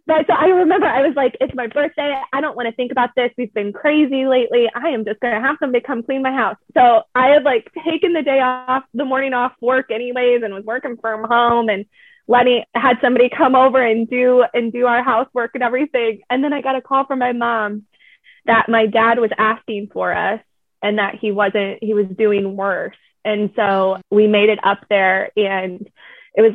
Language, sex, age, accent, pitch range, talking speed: English, female, 20-39, American, 200-255 Hz, 220 wpm